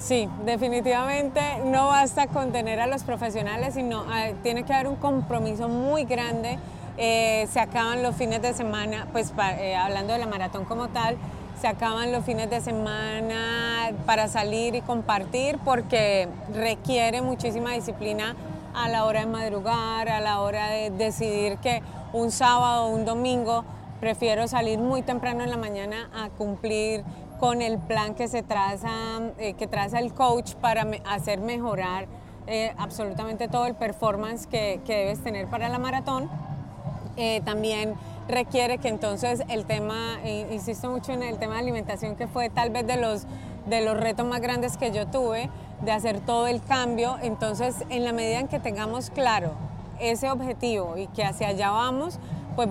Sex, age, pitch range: female, 30-49, 215-245 Hz